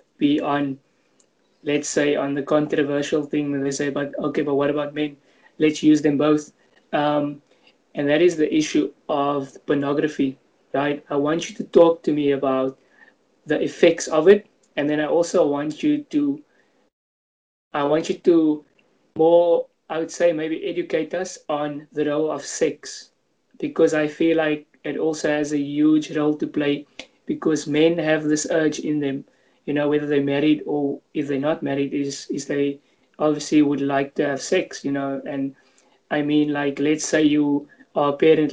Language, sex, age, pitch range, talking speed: English, male, 20-39, 140-155 Hz, 180 wpm